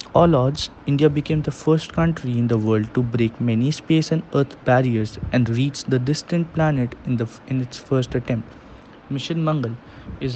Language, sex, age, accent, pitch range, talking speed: English, male, 20-39, Indian, 120-140 Hz, 180 wpm